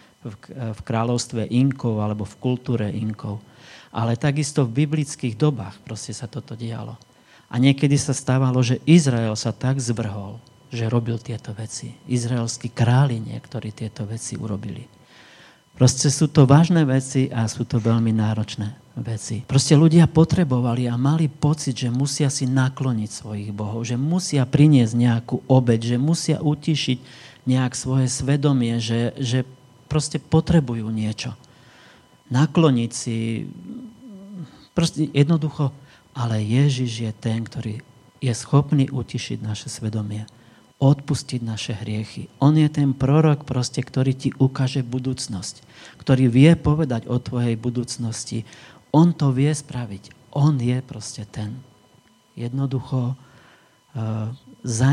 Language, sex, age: Slovak, male, 40-59